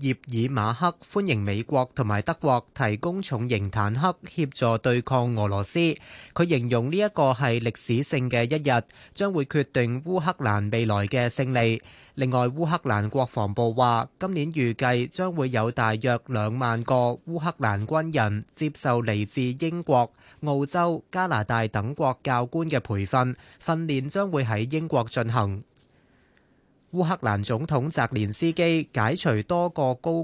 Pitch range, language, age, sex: 115-160 Hz, Chinese, 20-39, male